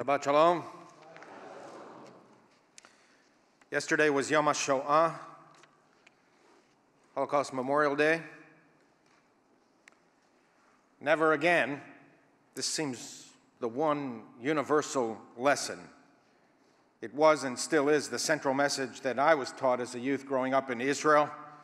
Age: 50-69